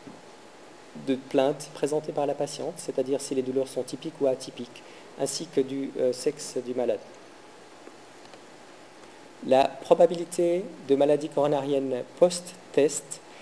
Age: 40-59